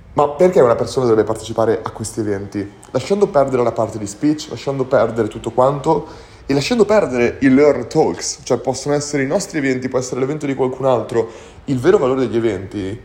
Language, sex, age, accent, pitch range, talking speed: Italian, male, 30-49, native, 110-140 Hz, 195 wpm